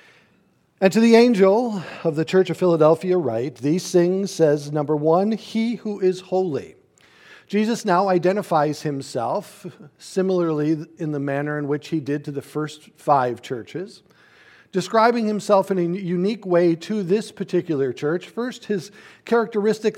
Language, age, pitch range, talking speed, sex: English, 50-69, 170-220 Hz, 145 wpm, male